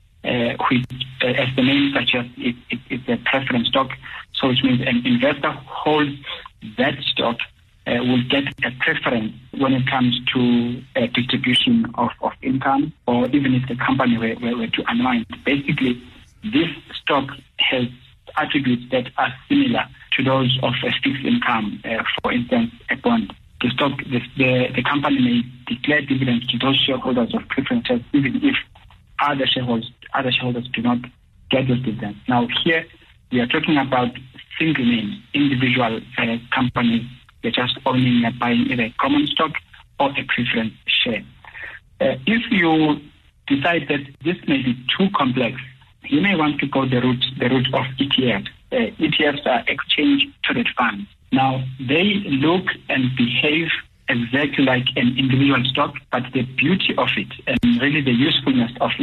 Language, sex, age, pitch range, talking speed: English, male, 60-79, 125-155 Hz, 165 wpm